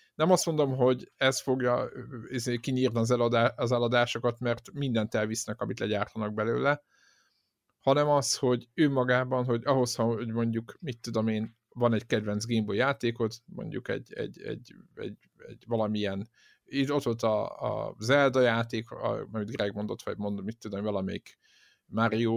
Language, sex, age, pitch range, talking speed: Hungarian, male, 50-69, 110-135 Hz, 155 wpm